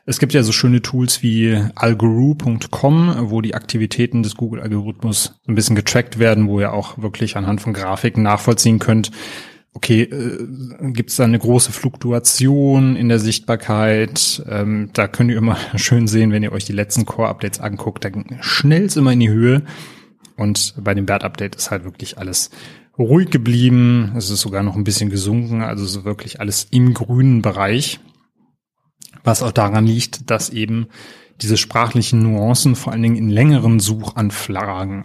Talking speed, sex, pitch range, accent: 165 wpm, male, 105-125 Hz, German